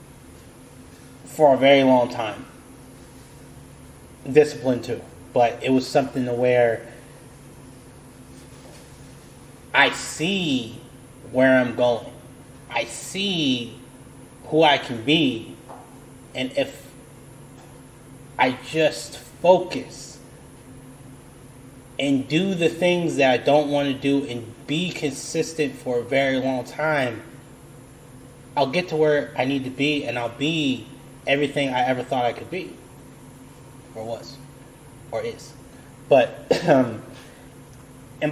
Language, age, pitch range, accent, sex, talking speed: English, 30-49, 120-135 Hz, American, male, 115 wpm